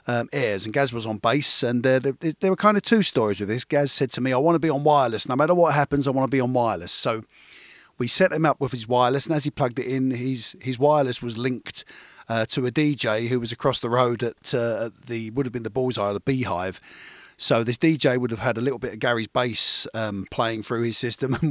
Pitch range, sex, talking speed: 120-145 Hz, male, 265 wpm